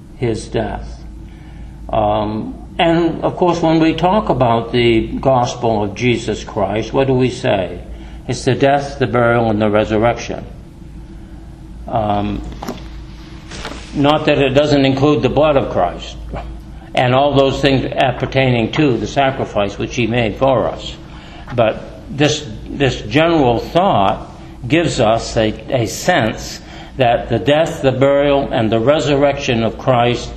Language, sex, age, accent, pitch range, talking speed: English, male, 60-79, American, 105-135 Hz, 140 wpm